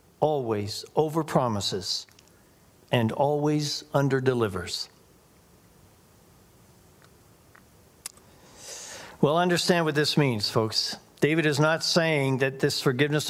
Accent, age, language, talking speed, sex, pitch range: American, 60-79, English, 80 wpm, male, 135-175 Hz